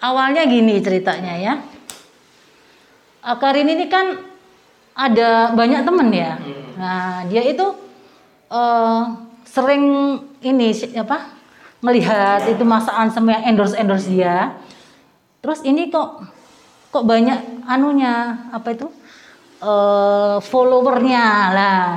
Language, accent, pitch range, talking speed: Indonesian, native, 200-275 Hz, 95 wpm